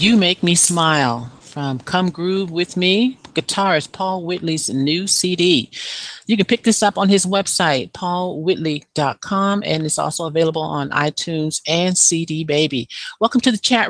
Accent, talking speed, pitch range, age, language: American, 155 wpm, 150-185 Hz, 50-69, English